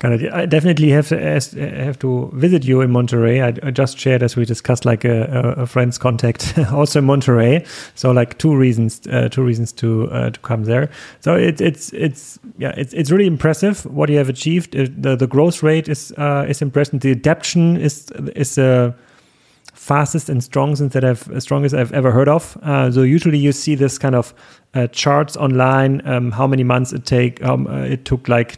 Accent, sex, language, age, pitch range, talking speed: German, male, English, 30-49, 120-145 Hz, 205 wpm